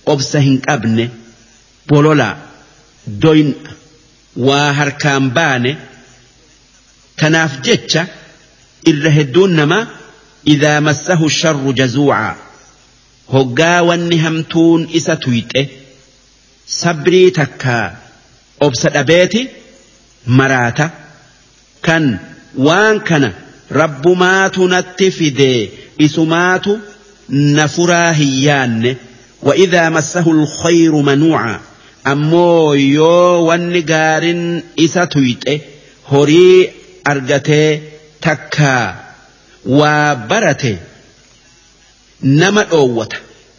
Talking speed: 50 wpm